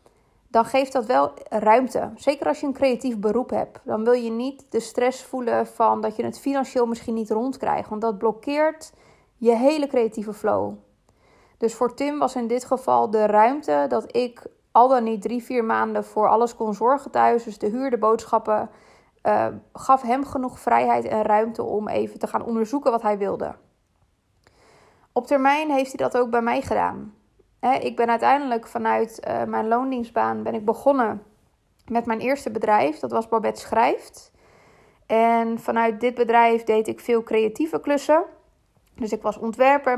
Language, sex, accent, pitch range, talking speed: Dutch, female, Dutch, 215-255 Hz, 175 wpm